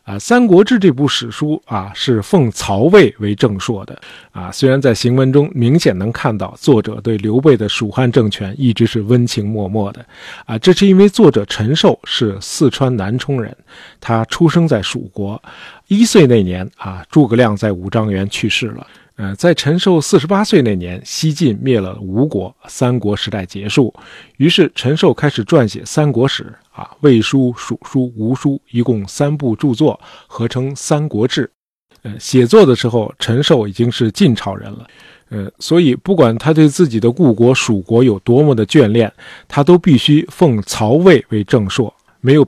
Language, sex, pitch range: Chinese, male, 110-150 Hz